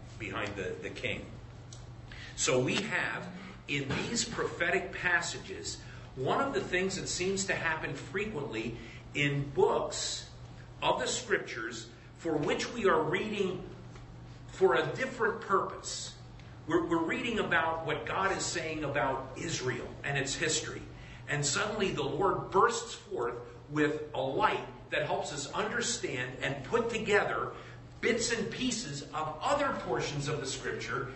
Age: 50-69